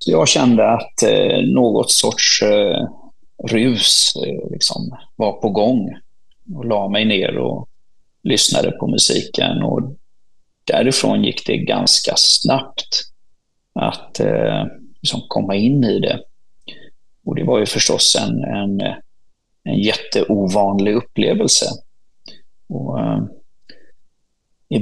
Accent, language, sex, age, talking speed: native, Swedish, male, 30-49, 90 wpm